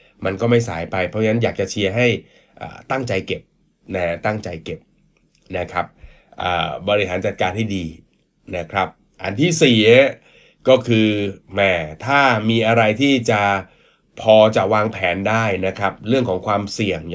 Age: 20-39